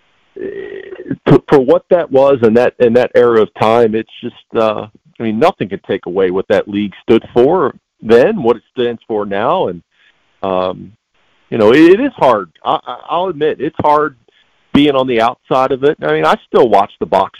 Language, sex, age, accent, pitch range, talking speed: English, male, 50-69, American, 105-150 Hz, 190 wpm